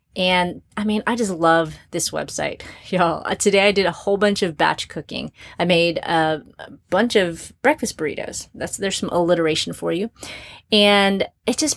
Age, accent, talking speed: 30-49, American, 180 wpm